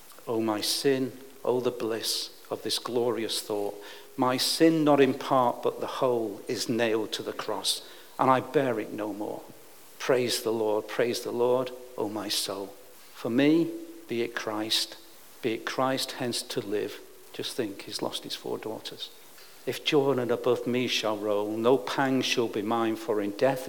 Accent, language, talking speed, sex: British, English, 185 wpm, male